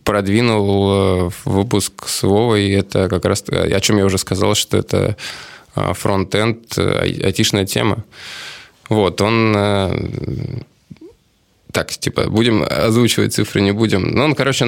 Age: 20-39